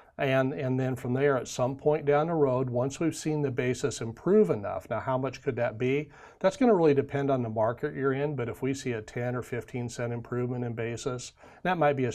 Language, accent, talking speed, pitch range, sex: English, American, 245 wpm, 115-145 Hz, male